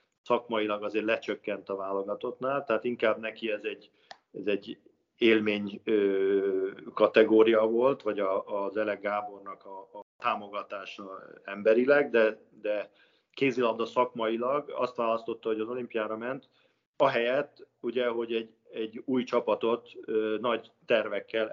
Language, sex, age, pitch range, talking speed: Hungarian, male, 50-69, 105-125 Hz, 130 wpm